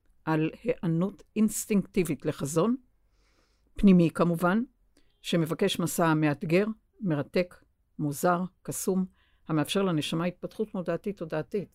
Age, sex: 60-79, female